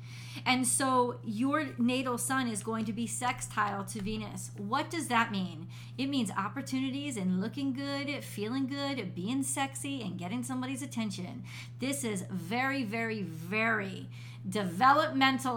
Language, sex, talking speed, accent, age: English, female, 140 wpm, American, 40-59